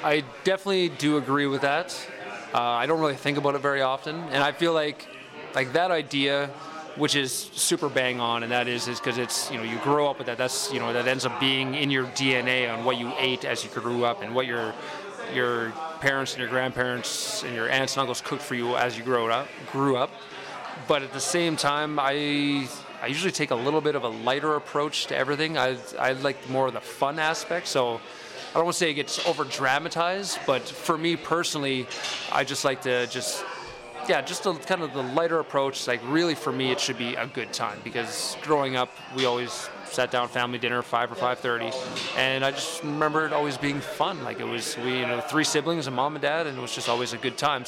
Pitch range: 125-150 Hz